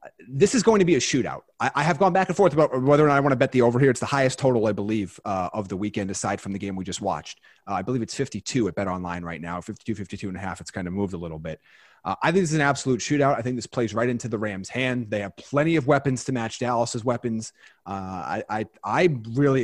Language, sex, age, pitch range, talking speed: English, male, 30-49, 110-145 Hz, 290 wpm